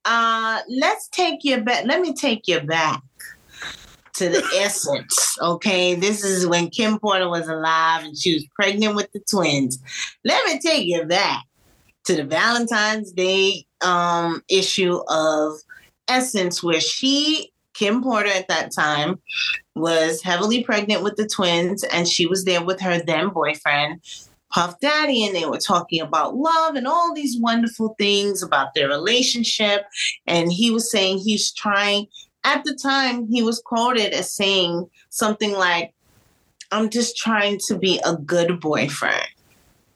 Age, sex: 30-49, female